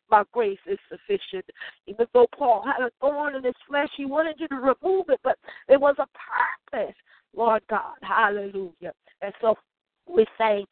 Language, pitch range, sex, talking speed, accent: English, 215-270 Hz, female, 175 wpm, American